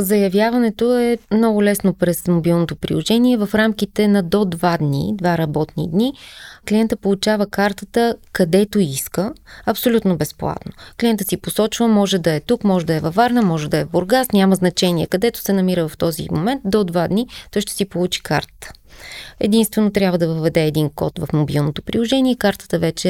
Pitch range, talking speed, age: 175-225 Hz, 175 wpm, 20-39